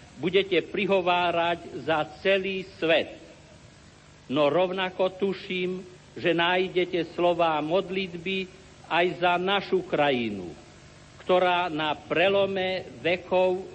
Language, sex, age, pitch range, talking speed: Slovak, male, 50-69, 170-195 Hz, 85 wpm